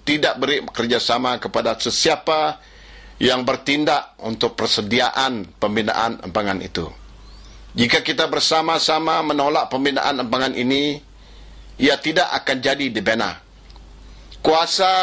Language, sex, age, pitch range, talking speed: English, male, 50-69, 125-155 Hz, 100 wpm